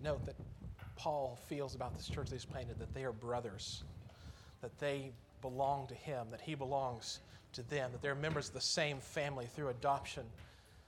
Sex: male